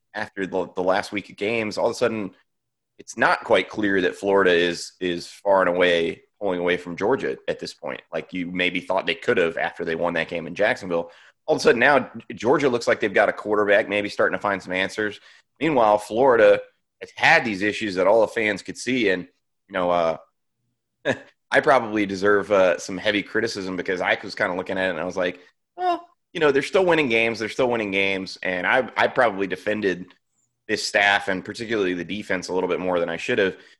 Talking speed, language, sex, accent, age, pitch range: 225 wpm, English, male, American, 30-49, 90-115 Hz